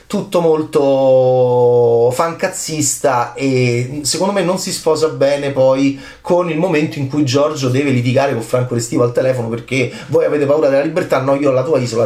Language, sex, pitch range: Italian, male, 125-155 Hz